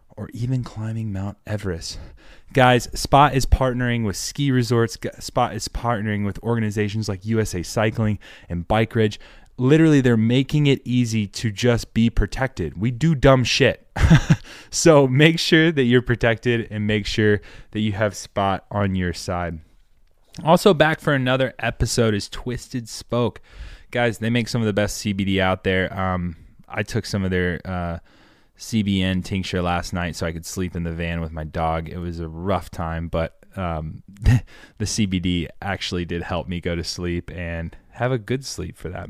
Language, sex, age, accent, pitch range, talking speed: English, male, 20-39, American, 90-120 Hz, 175 wpm